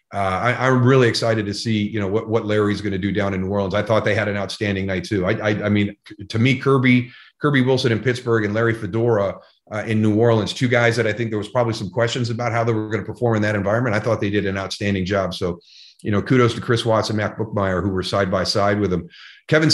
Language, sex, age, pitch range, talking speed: English, male, 40-59, 105-125 Hz, 275 wpm